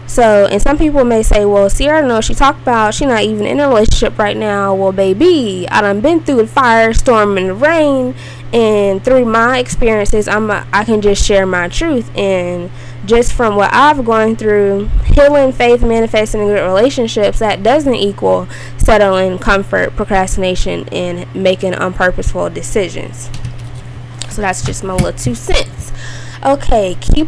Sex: female